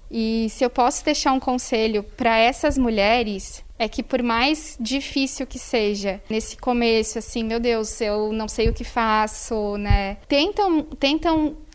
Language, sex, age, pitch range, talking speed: Portuguese, female, 20-39, 230-275 Hz, 160 wpm